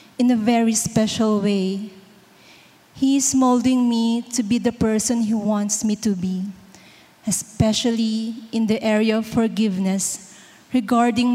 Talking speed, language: 130 wpm, English